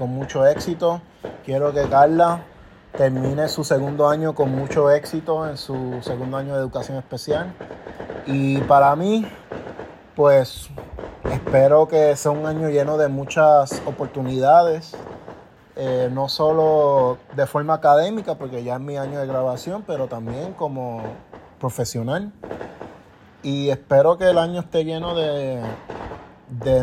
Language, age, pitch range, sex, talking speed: English, 30-49, 130-160 Hz, male, 130 wpm